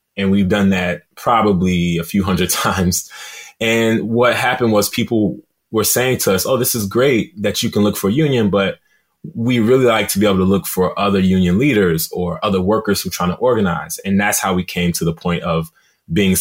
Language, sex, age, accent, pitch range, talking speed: English, male, 20-39, American, 85-105 Hz, 220 wpm